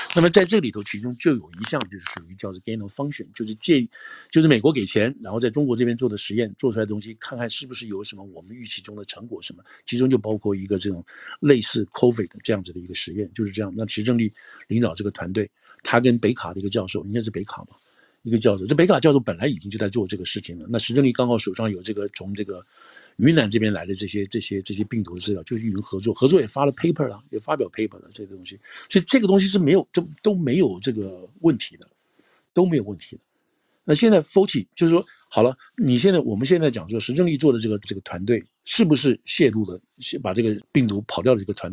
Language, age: Chinese, 50-69